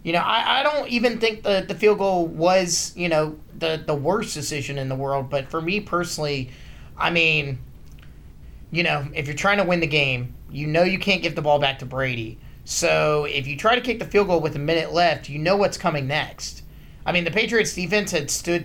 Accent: American